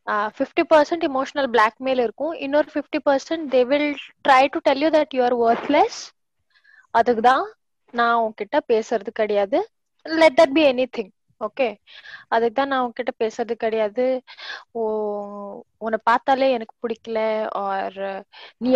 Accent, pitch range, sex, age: native, 215-265 Hz, female, 20-39